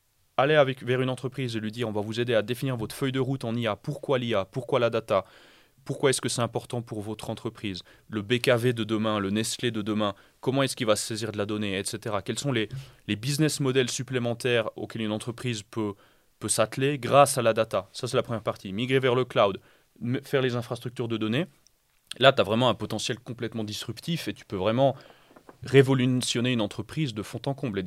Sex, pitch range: male, 110-130 Hz